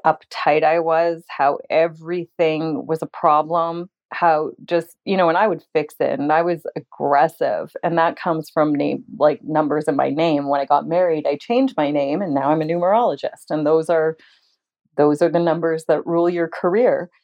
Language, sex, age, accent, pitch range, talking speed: English, female, 30-49, American, 160-190 Hz, 190 wpm